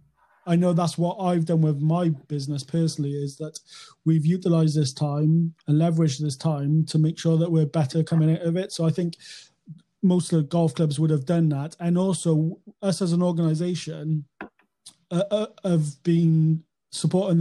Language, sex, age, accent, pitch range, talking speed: English, male, 30-49, British, 150-165 Hz, 185 wpm